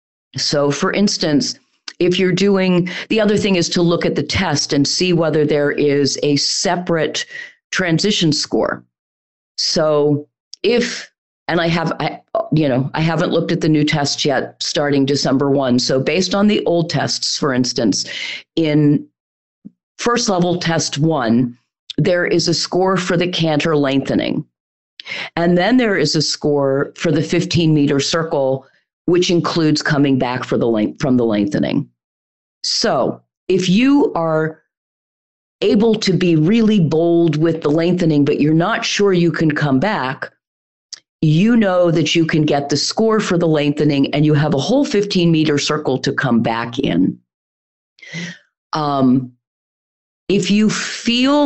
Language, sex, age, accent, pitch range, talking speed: English, female, 40-59, American, 140-180 Hz, 150 wpm